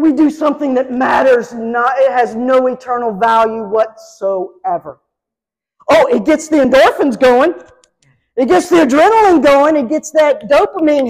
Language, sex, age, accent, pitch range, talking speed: English, female, 50-69, American, 245-320 Hz, 145 wpm